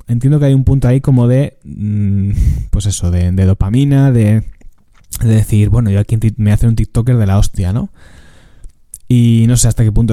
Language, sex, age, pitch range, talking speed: Spanish, male, 20-39, 100-120 Hz, 195 wpm